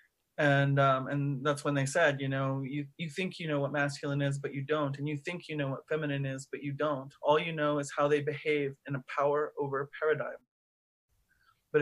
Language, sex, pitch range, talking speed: English, male, 140-165 Hz, 230 wpm